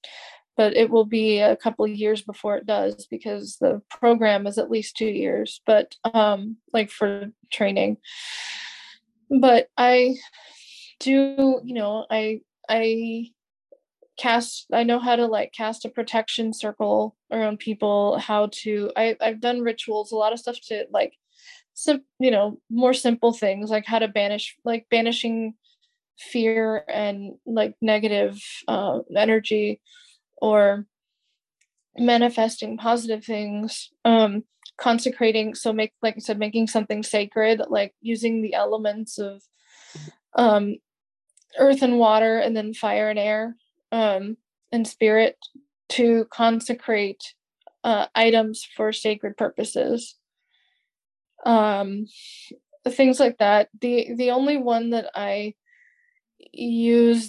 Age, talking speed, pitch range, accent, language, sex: 20-39, 130 wpm, 215-240 Hz, American, English, female